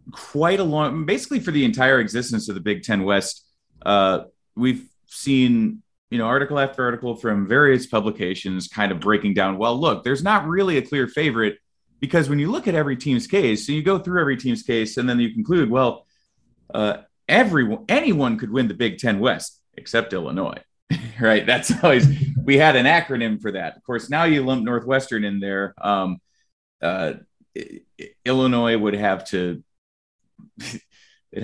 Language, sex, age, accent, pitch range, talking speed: English, male, 30-49, American, 100-145 Hz, 175 wpm